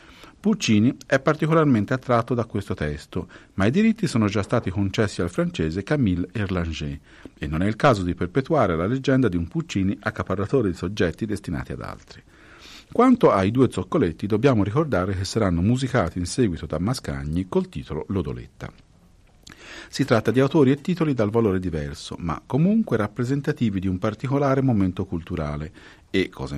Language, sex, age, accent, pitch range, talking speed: Italian, male, 50-69, native, 85-130 Hz, 160 wpm